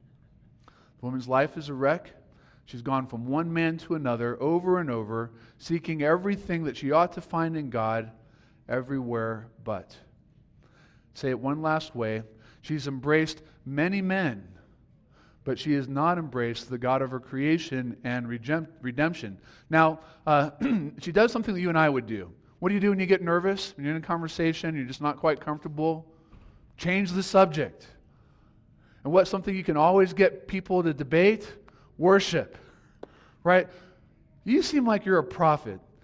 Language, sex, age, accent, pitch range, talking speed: English, male, 40-59, American, 125-170 Hz, 160 wpm